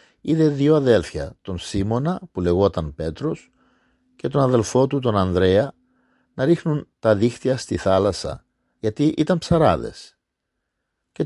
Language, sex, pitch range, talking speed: Greek, male, 95-155 Hz, 130 wpm